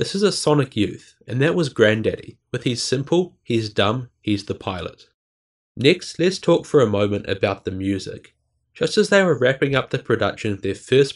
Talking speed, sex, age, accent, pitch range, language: 200 wpm, male, 20-39, Australian, 100-135 Hz, English